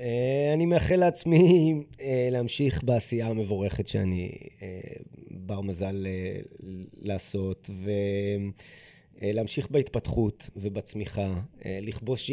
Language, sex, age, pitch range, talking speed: Hebrew, male, 30-49, 95-125 Hz, 70 wpm